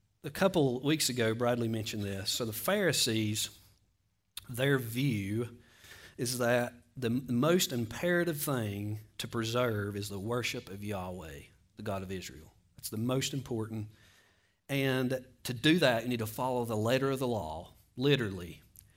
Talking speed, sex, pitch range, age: 150 wpm, male, 100-125 Hz, 40-59